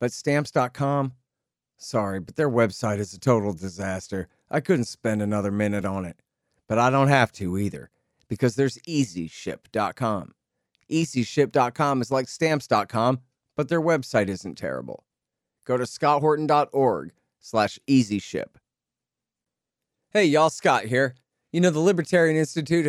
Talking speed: 130 wpm